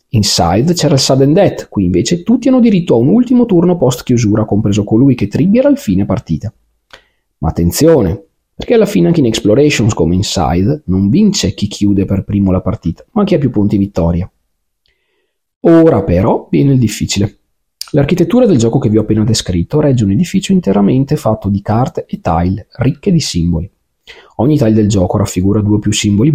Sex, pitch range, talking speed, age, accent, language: male, 95-135 Hz, 185 wpm, 40-59, native, Italian